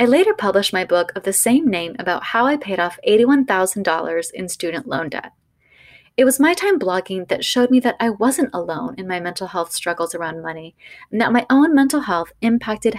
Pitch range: 185-255 Hz